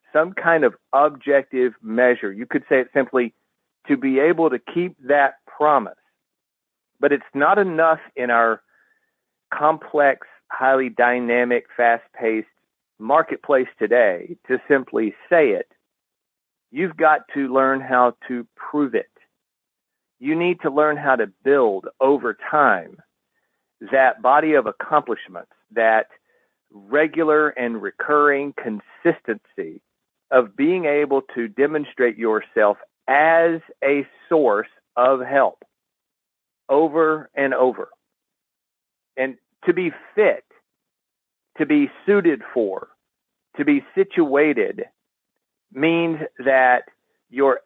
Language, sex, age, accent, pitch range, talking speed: English, male, 40-59, American, 125-170 Hz, 110 wpm